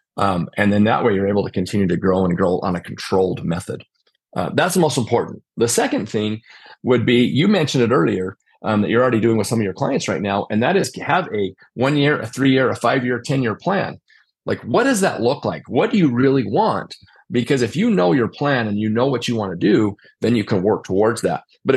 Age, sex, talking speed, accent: 40-59, male, 240 wpm, American